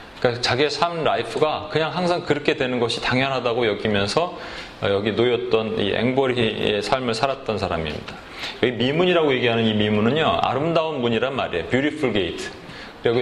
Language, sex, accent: Korean, male, native